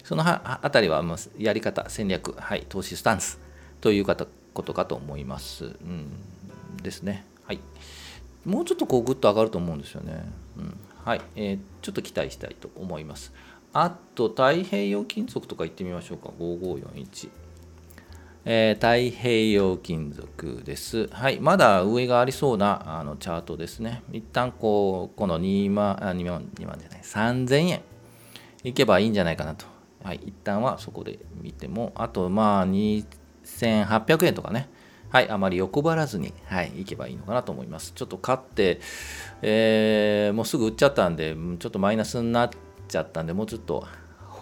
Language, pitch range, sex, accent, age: Japanese, 85-115 Hz, male, native, 40-59